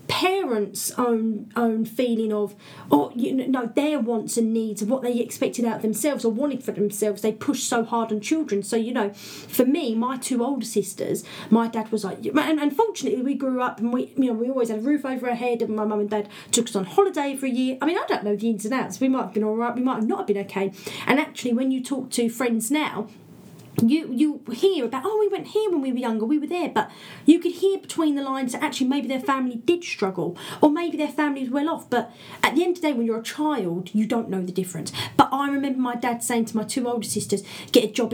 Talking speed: 265 wpm